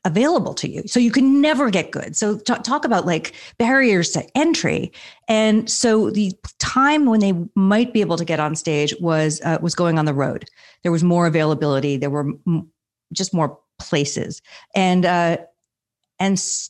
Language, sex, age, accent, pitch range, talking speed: English, female, 40-59, American, 165-245 Hz, 185 wpm